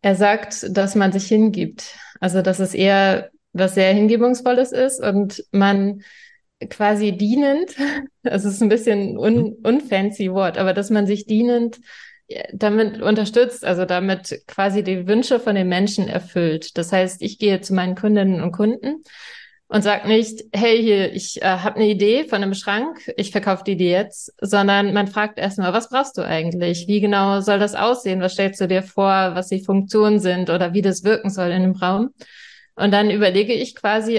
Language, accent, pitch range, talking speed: German, German, 190-220 Hz, 180 wpm